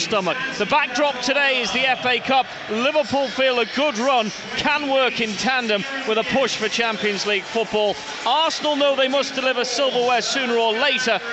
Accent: British